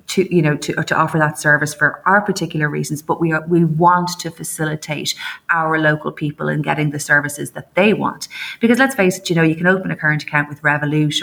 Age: 30-49